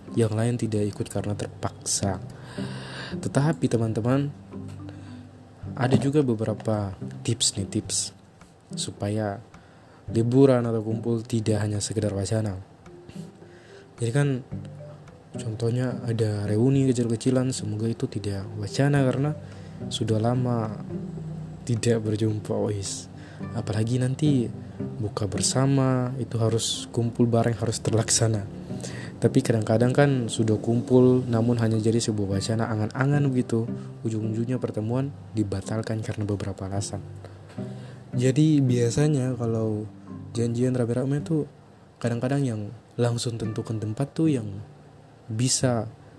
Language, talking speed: Indonesian, 105 wpm